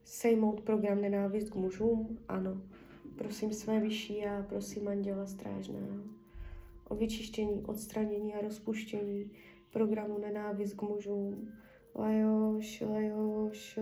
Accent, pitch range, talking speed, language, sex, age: native, 195-220 Hz, 105 wpm, Czech, female, 20-39